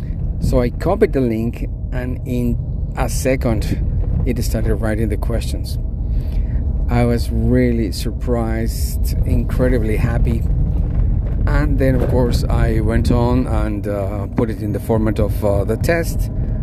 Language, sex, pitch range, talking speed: English, male, 105-120 Hz, 135 wpm